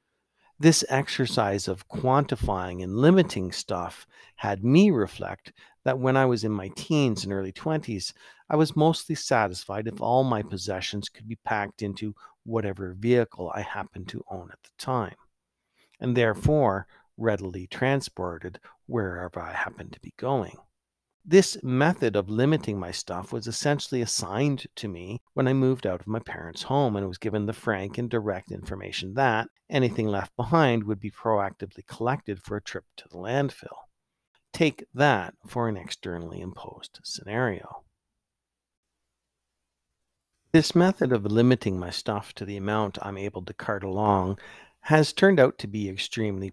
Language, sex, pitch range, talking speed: English, male, 100-130 Hz, 155 wpm